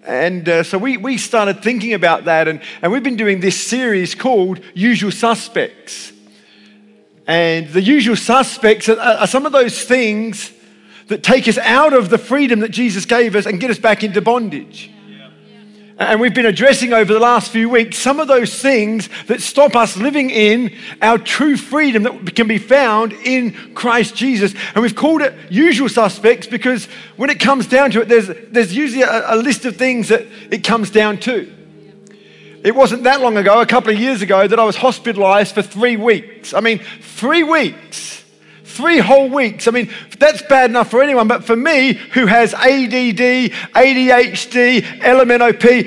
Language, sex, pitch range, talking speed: English, male, 210-255 Hz, 180 wpm